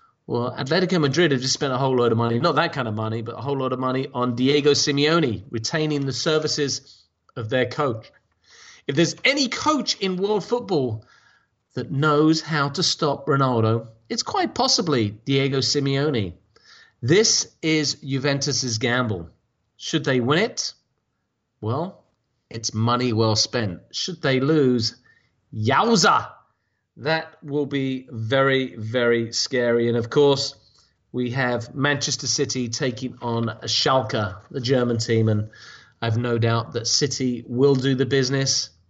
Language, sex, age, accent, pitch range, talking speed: English, male, 30-49, British, 115-150 Hz, 145 wpm